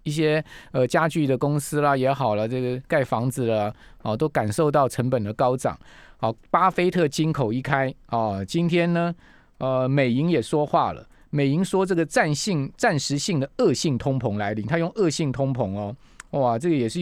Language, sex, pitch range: Chinese, male, 125-165 Hz